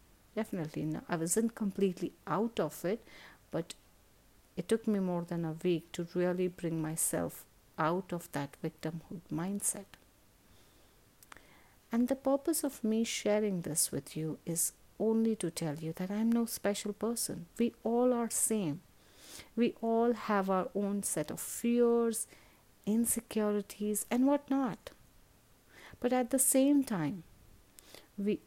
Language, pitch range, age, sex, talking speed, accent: English, 165-220 Hz, 50-69, female, 135 wpm, Indian